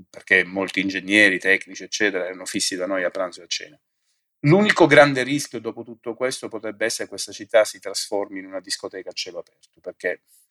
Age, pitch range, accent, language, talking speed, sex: 30-49, 95-130 Hz, native, Italian, 195 wpm, male